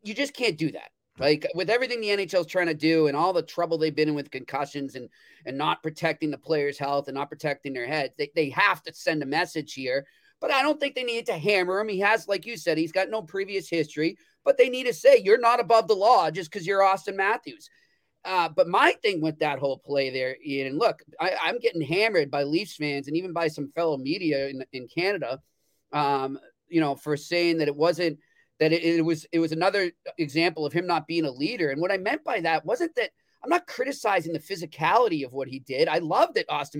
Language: English